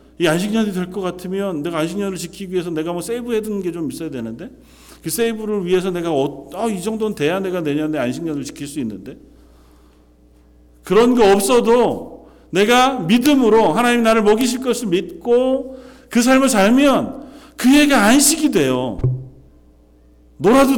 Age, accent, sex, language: 40-59, native, male, Korean